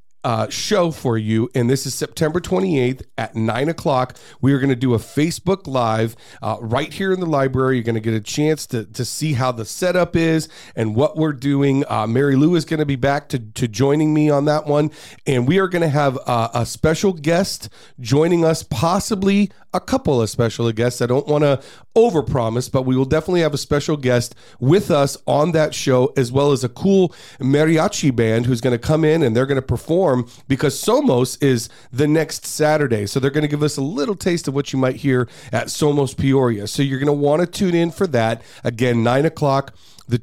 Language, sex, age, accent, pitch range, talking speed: English, male, 40-59, American, 120-155 Hz, 220 wpm